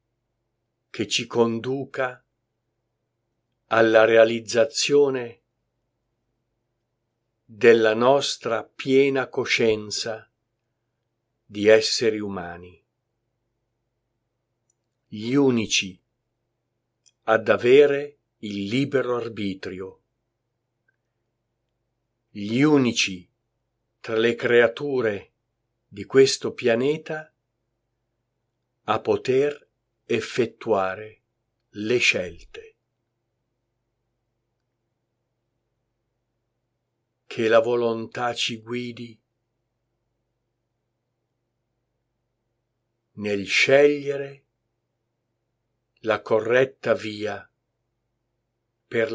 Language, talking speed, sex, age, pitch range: Italian, 50 wpm, male, 50-69, 115-120 Hz